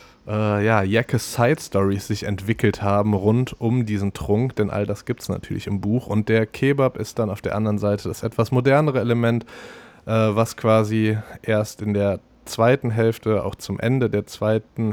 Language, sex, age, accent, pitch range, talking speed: German, male, 20-39, German, 105-120 Hz, 170 wpm